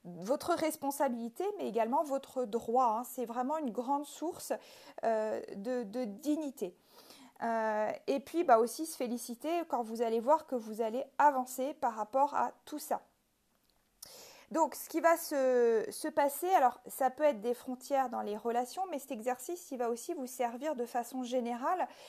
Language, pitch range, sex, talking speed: French, 235-295 Hz, female, 170 wpm